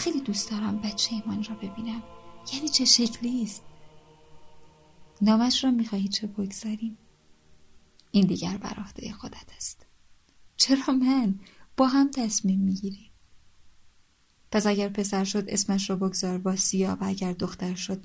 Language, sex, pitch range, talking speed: Persian, female, 195-230 Hz, 130 wpm